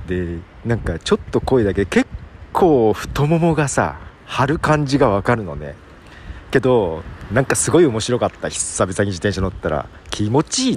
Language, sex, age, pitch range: Japanese, male, 40-59, 90-130 Hz